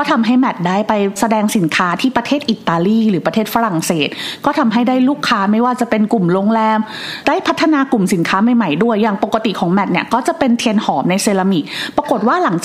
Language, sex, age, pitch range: Thai, female, 30-49, 200-260 Hz